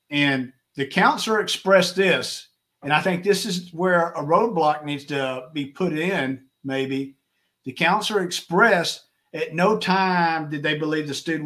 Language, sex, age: English, male, 50-69